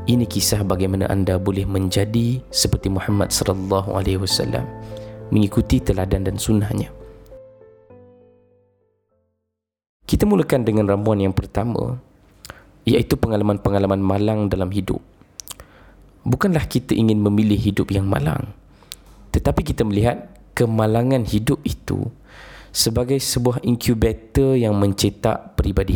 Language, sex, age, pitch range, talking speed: Malay, male, 20-39, 100-125 Hz, 105 wpm